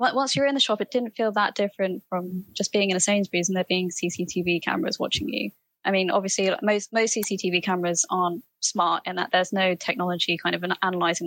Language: English